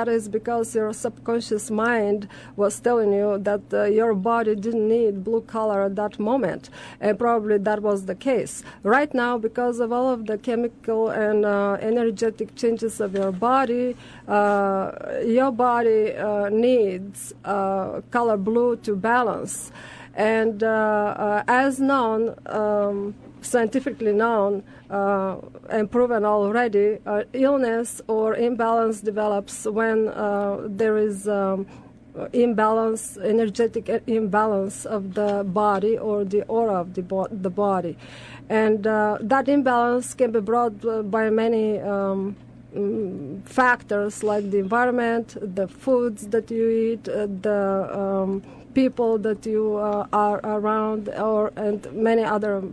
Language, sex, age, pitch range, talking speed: English, female, 40-59, 205-230 Hz, 135 wpm